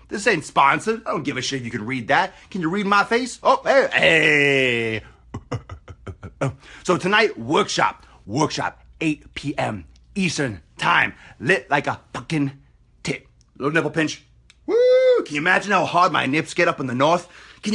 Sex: male